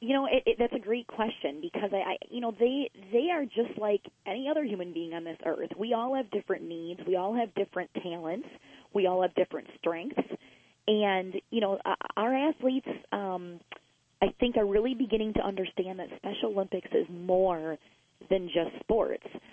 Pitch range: 175-220 Hz